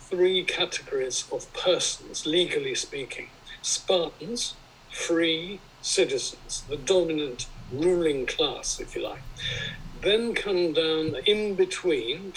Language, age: English, 50-69